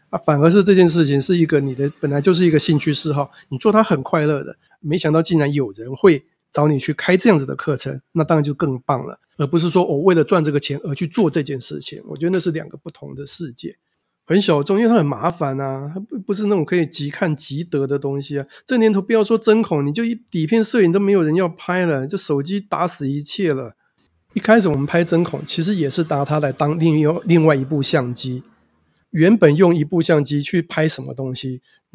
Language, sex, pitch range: Chinese, male, 145-180 Hz